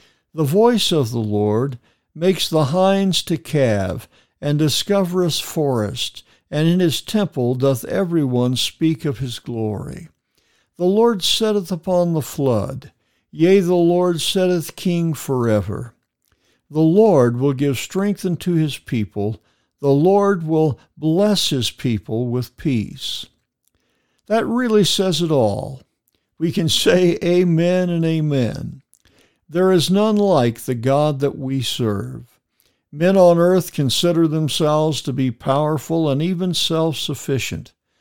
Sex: male